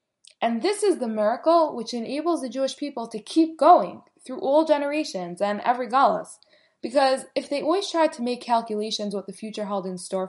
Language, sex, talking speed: English, female, 190 wpm